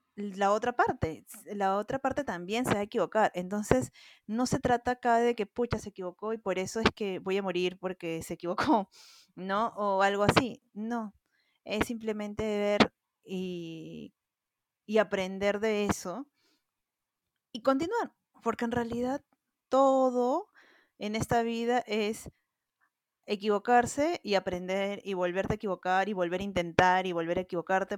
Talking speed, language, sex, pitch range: 150 wpm, Spanish, female, 185-240 Hz